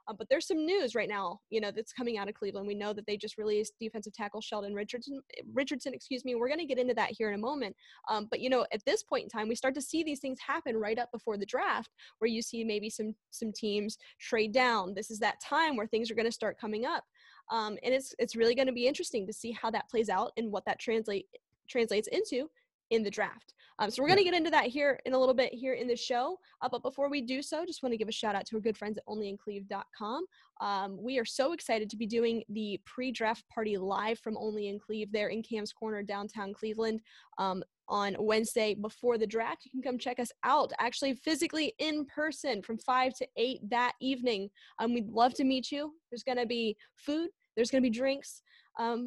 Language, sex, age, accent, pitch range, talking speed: English, female, 10-29, American, 215-260 Hz, 240 wpm